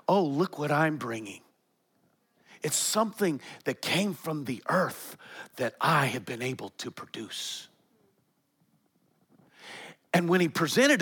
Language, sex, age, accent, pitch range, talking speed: English, male, 50-69, American, 150-205 Hz, 125 wpm